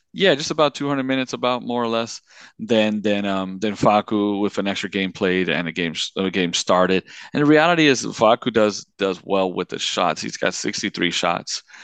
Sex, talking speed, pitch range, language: male, 205 wpm, 95-115 Hz, English